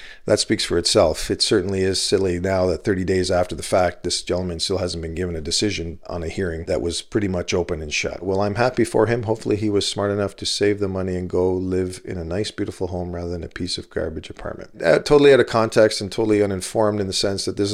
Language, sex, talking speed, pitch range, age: English, male, 255 wpm, 85-100 Hz, 50-69